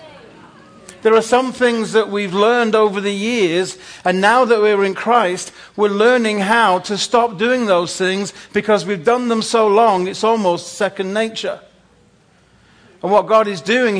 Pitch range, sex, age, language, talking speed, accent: 145-210 Hz, male, 40-59, English, 165 wpm, British